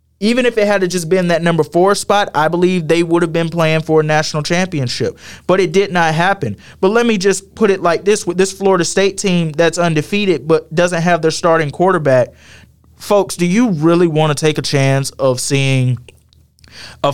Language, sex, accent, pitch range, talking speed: English, male, American, 140-175 Hz, 210 wpm